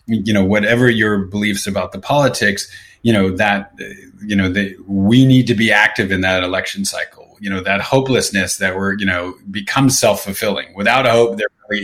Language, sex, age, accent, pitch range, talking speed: English, male, 30-49, American, 95-115 Hz, 190 wpm